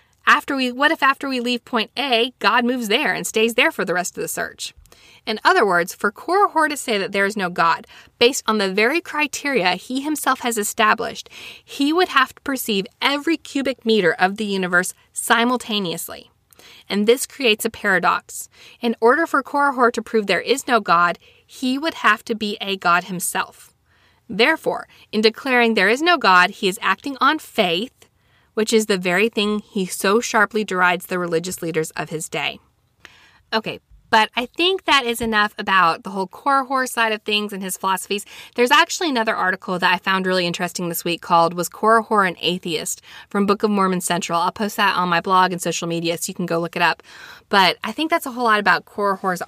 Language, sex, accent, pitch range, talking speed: English, female, American, 185-250 Hz, 205 wpm